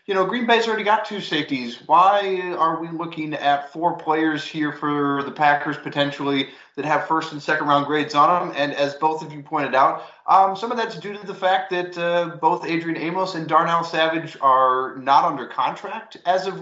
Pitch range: 135-170 Hz